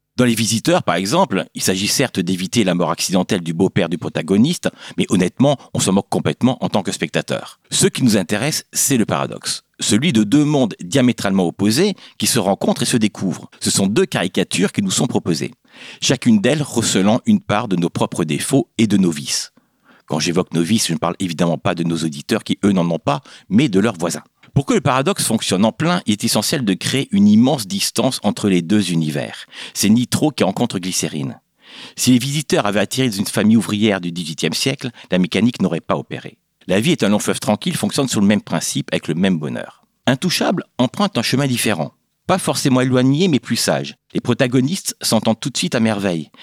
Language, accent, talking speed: French, French, 210 wpm